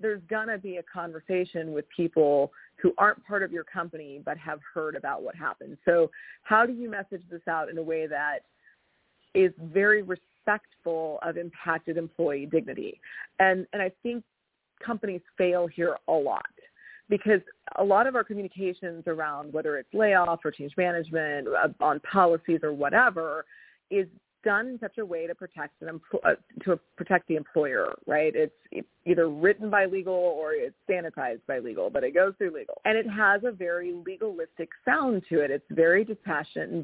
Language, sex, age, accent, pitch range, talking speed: English, female, 30-49, American, 165-210 Hz, 180 wpm